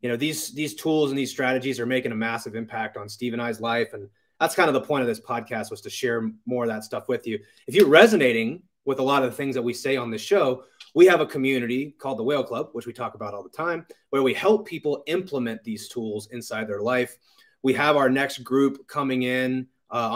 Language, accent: English, American